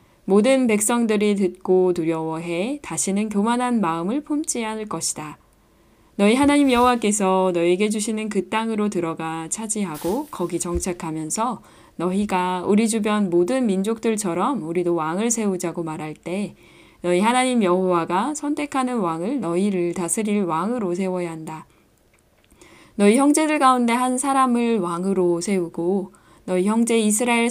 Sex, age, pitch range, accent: female, 10-29, 175-225 Hz, native